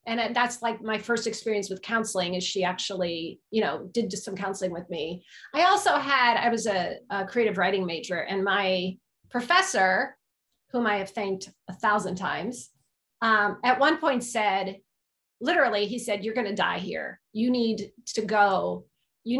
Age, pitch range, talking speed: 30-49, 205-275 Hz, 175 wpm